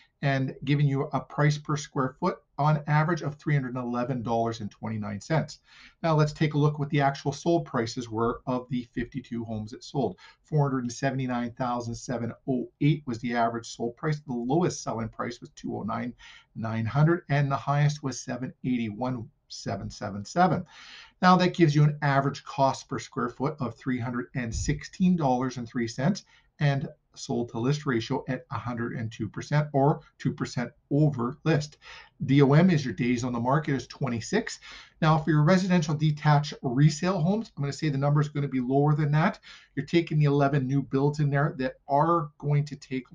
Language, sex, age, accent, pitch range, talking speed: English, male, 50-69, American, 120-150 Hz, 155 wpm